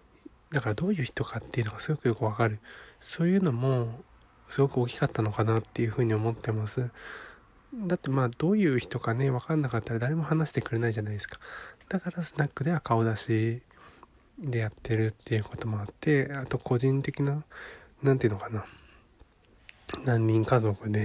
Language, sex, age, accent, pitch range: Japanese, male, 20-39, native, 115-150 Hz